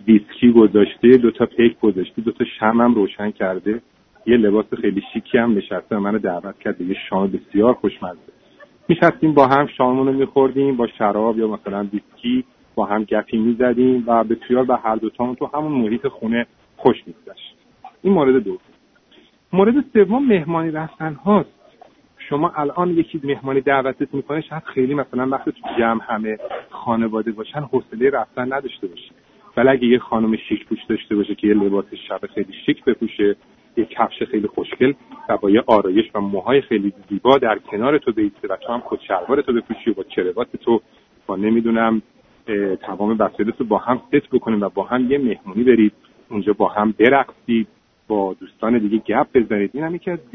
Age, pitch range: 40-59, 110-140 Hz